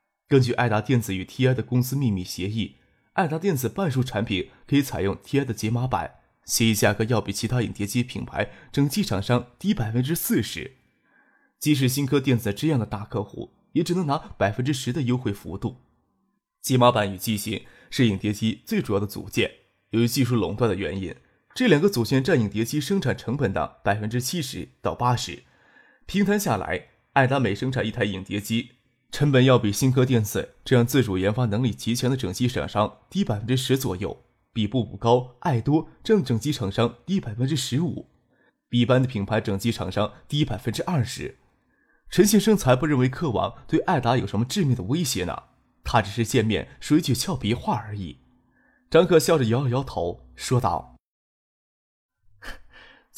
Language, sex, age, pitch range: Chinese, male, 20-39, 105-140 Hz